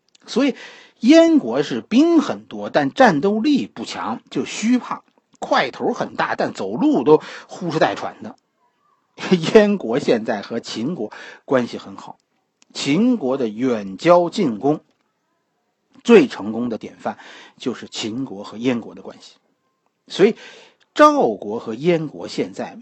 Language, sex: Chinese, male